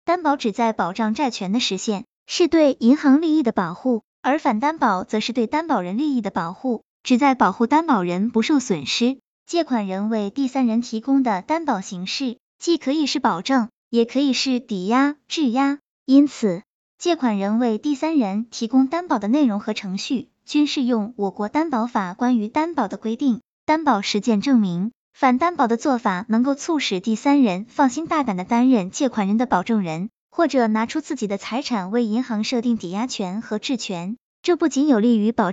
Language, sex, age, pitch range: Chinese, male, 20-39, 220-280 Hz